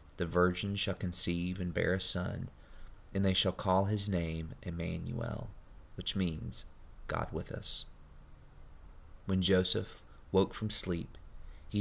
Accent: American